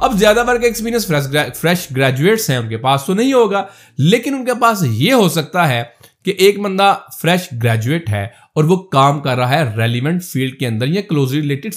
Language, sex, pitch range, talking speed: Urdu, male, 140-200 Hz, 205 wpm